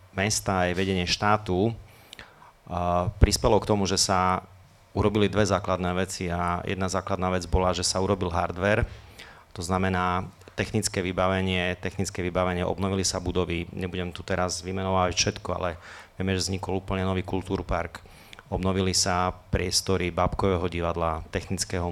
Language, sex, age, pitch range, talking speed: Slovak, male, 30-49, 90-105 Hz, 135 wpm